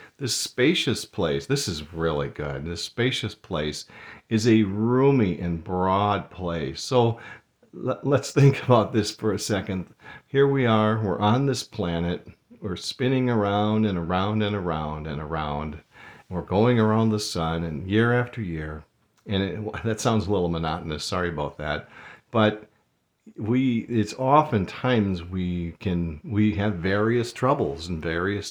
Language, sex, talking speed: English, male, 145 wpm